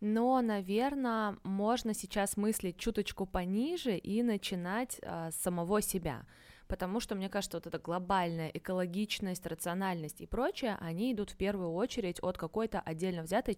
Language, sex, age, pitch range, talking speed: Russian, female, 20-39, 185-225 Hz, 140 wpm